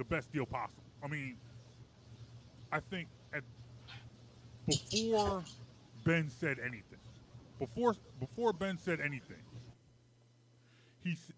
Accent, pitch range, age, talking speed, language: American, 120-150 Hz, 30-49, 100 wpm, English